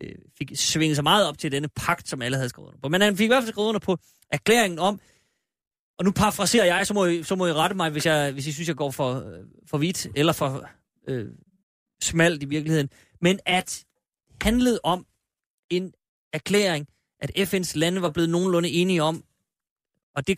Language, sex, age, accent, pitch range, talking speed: Danish, male, 30-49, native, 140-195 Hz, 205 wpm